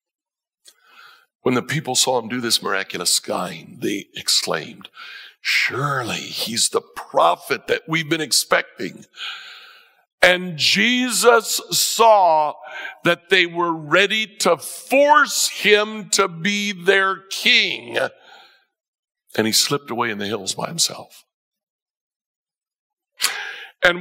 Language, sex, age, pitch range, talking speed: English, male, 60-79, 165-250 Hz, 105 wpm